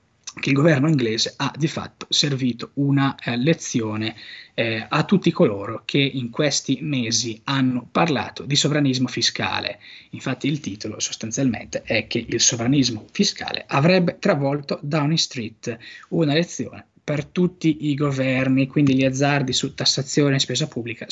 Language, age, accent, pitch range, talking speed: Italian, 20-39, native, 125-150 Hz, 145 wpm